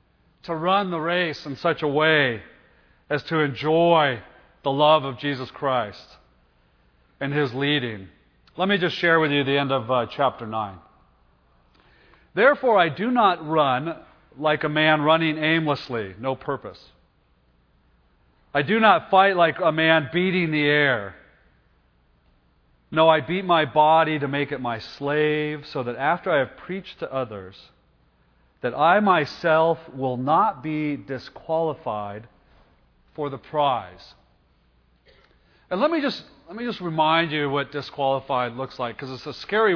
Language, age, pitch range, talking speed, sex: English, 40-59, 105-160 Hz, 150 wpm, male